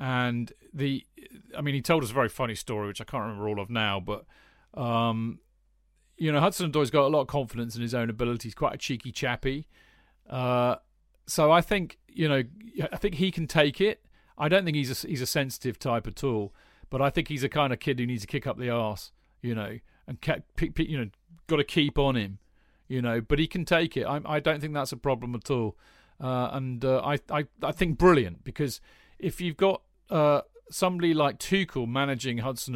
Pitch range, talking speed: 115-150 Hz, 225 wpm